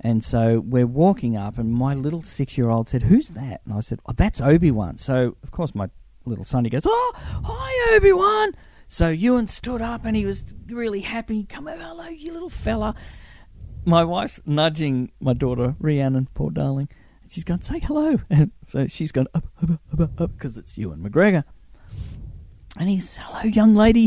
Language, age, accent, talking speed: English, 40-59, Australian, 185 wpm